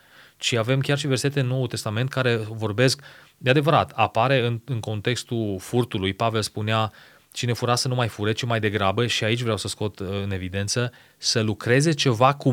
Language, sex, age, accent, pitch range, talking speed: Romanian, male, 30-49, native, 110-140 Hz, 185 wpm